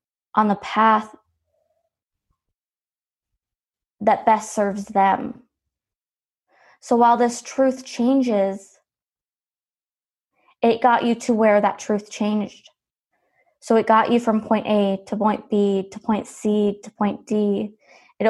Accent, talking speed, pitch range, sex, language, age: American, 120 wpm, 205-235 Hz, female, English, 20-39